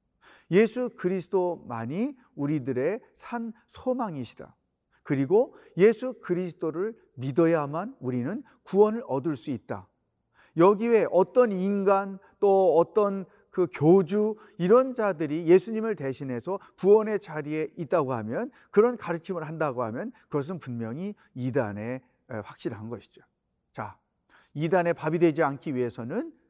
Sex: male